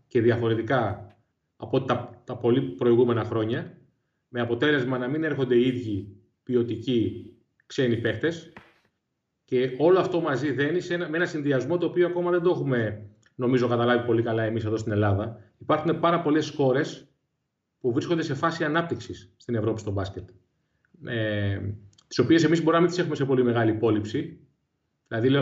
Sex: male